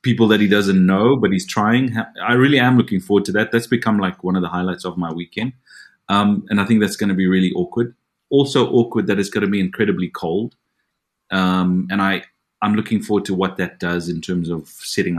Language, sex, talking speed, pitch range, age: English, male, 230 wpm, 90-120 Hz, 30-49